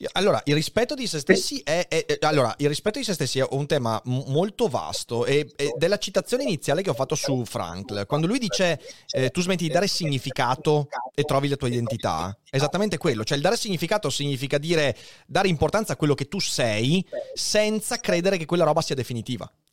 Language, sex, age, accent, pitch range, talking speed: Italian, male, 30-49, native, 130-185 Hz, 195 wpm